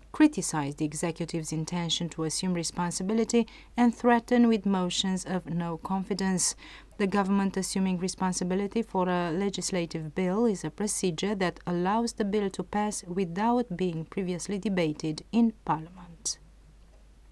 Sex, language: female, English